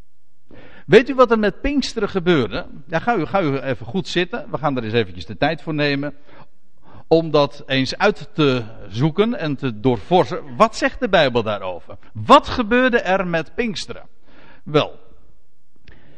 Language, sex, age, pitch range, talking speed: Dutch, male, 50-69, 140-225 Hz, 165 wpm